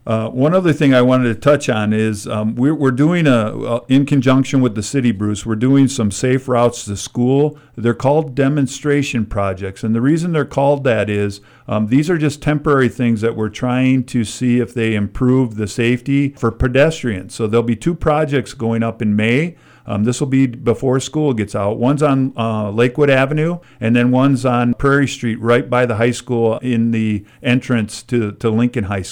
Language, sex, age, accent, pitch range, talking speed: English, male, 50-69, American, 115-140 Hz, 195 wpm